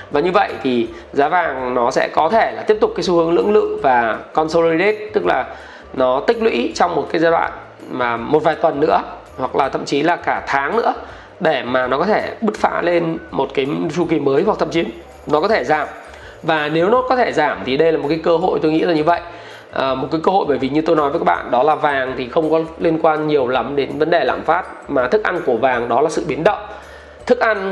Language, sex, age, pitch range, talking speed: Vietnamese, male, 20-39, 150-205 Hz, 260 wpm